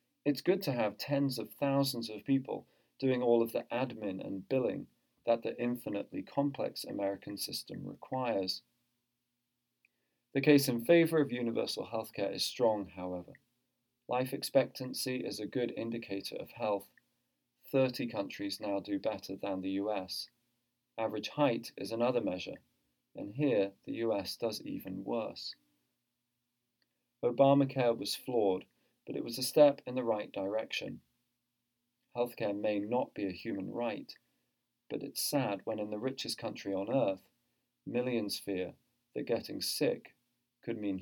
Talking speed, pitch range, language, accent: 140 wpm, 105-130 Hz, English, British